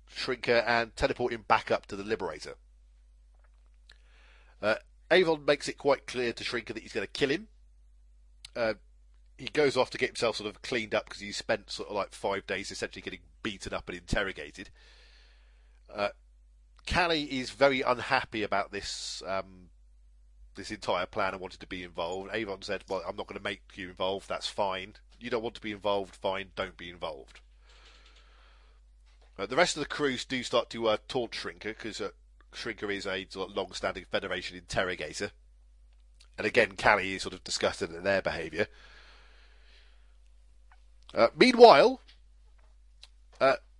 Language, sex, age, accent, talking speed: English, male, 40-59, British, 165 wpm